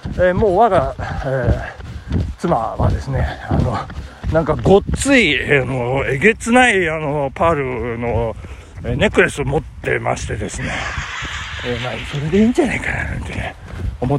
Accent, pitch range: native, 130-190 Hz